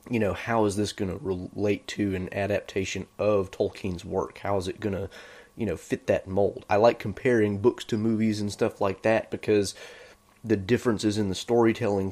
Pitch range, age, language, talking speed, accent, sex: 95-110 Hz, 30-49, English, 200 wpm, American, male